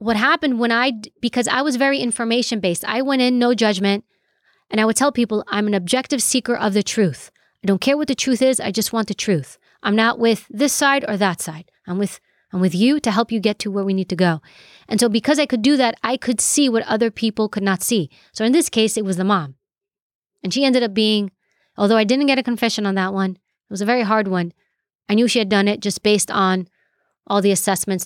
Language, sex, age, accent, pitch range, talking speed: English, female, 30-49, American, 200-245 Hz, 250 wpm